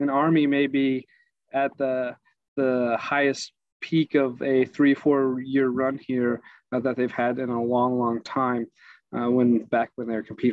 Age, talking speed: 30-49, 175 wpm